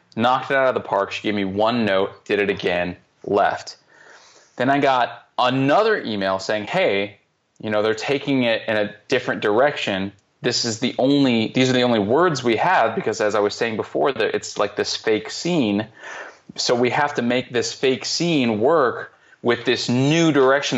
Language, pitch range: English, 105-140 Hz